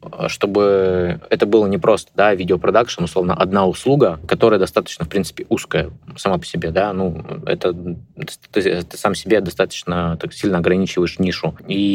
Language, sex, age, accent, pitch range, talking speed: Russian, male, 20-39, native, 85-100 Hz, 150 wpm